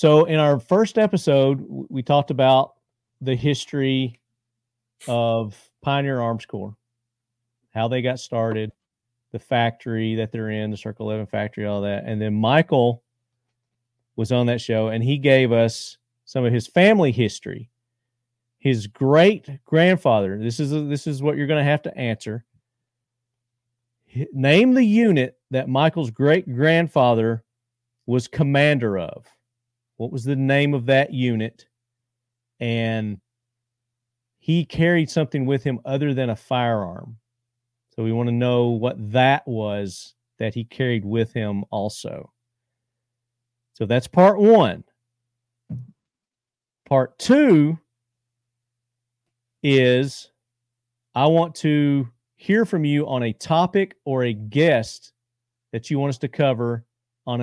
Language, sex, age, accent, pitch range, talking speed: English, male, 40-59, American, 120-140 Hz, 130 wpm